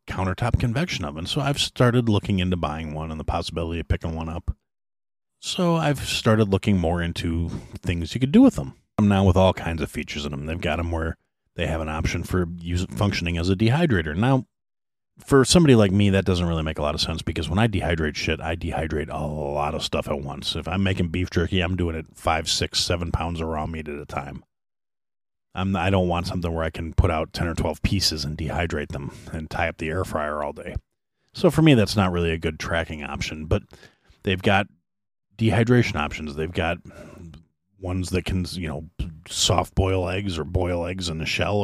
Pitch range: 80-105 Hz